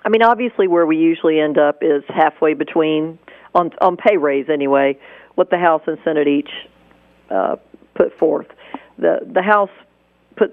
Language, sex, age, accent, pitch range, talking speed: English, female, 50-69, American, 155-205 Hz, 165 wpm